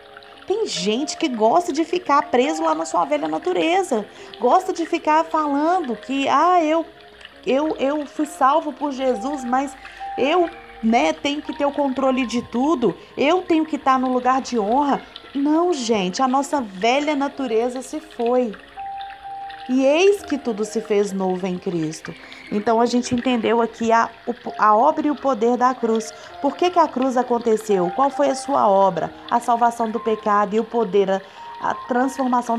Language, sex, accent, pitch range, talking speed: Portuguese, female, Brazilian, 215-285 Hz, 170 wpm